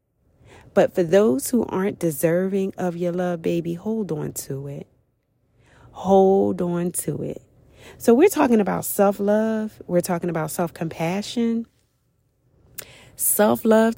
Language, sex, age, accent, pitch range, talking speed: English, female, 30-49, American, 130-195 Hz, 120 wpm